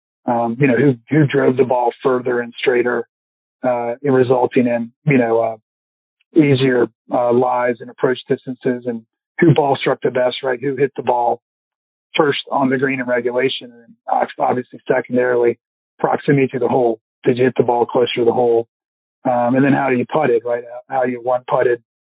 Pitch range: 120-140 Hz